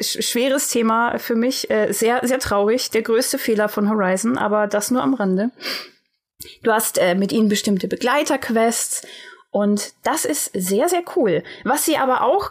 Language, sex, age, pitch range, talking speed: German, female, 20-39, 210-255 Hz, 170 wpm